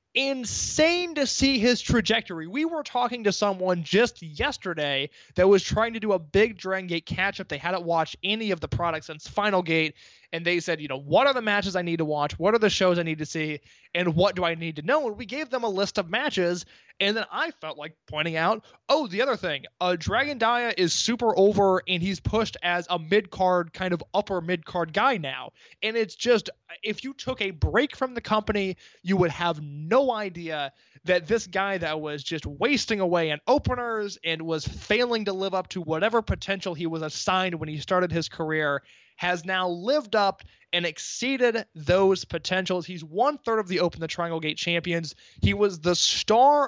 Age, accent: 20-39, American